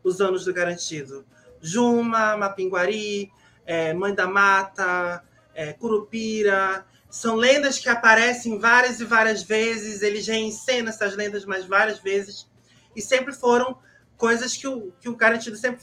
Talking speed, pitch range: 140 wpm, 180-225 Hz